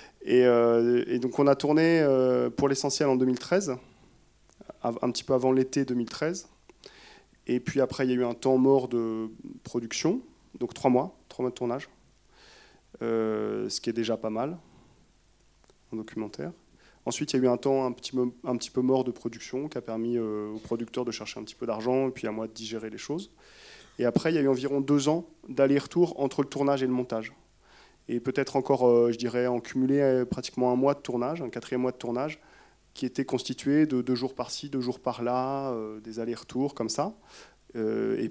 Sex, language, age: male, French, 20-39